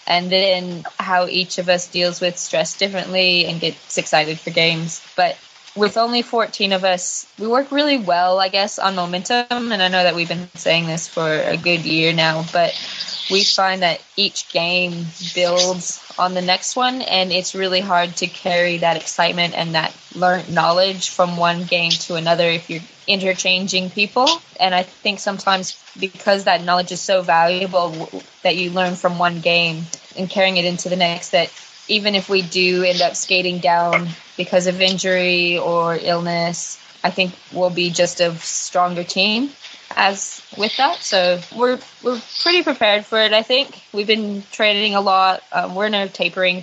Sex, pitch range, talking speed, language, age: female, 175-195 Hz, 180 wpm, English, 20-39